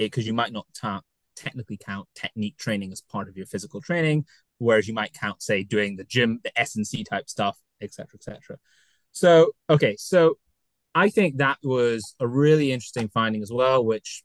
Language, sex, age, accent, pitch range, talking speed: English, male, 20-39, British, 105-135 Hz, 185 wpm